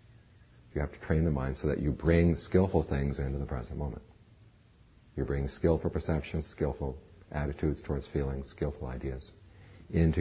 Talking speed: 160 wpm